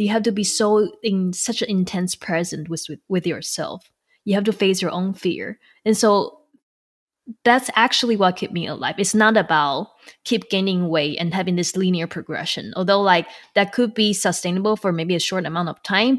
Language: English